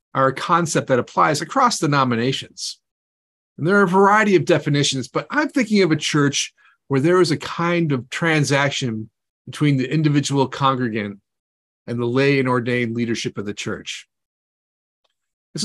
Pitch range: 125-170 Hz